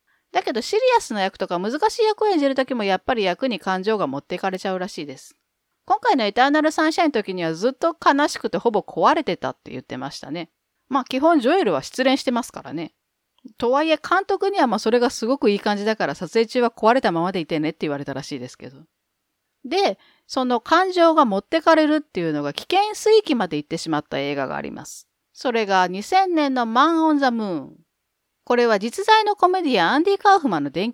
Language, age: Japanese, 40-59